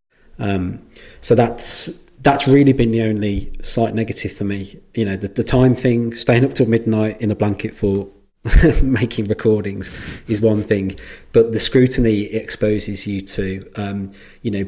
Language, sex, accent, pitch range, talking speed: English, male, British, 95-110 Hz, 170 wpm